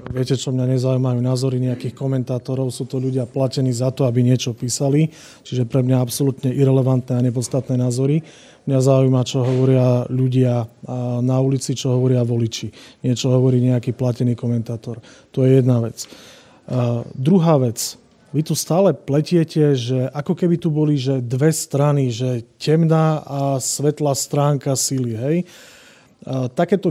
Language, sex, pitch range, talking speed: Slovak, male, 130-160 Hz, 145 wpm